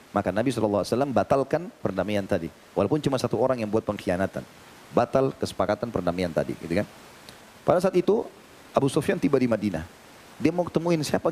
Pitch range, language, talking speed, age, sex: 110-140 Hz, Indonesian, 165 wpm, 30-49, male